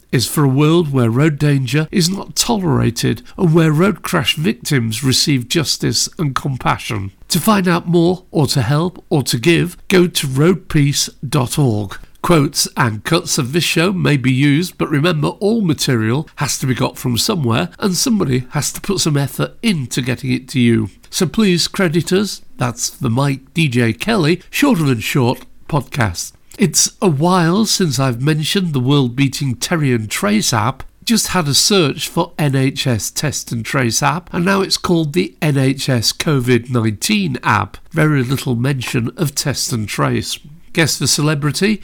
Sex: male